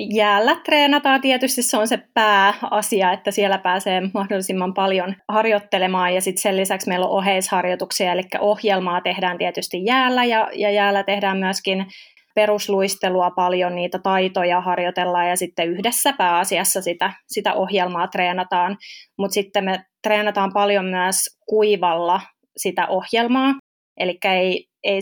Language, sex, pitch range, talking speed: Finnish, female, 185-210 Hz, 125 wpm